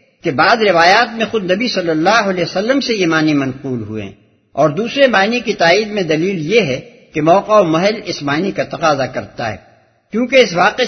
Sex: male